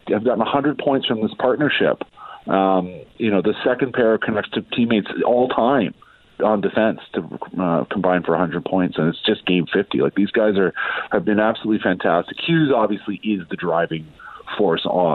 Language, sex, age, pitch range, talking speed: English, male, 40-59, 90-115 Hz, 180 wpm